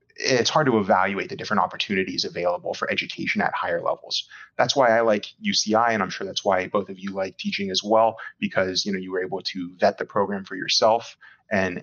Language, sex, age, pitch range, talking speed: English, male, 20-39, 95-120 Hz, 220 wpm